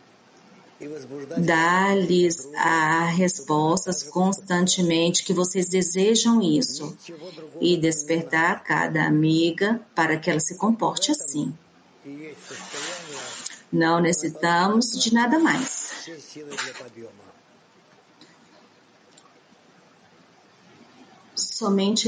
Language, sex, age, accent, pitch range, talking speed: English, female, 40-59, Brazilian, 165-195 Hz, 65 wpm